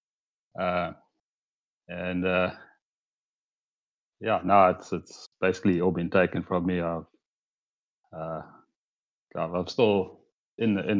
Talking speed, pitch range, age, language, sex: 110 wpm, 85-95 Hz, 30-49, English, male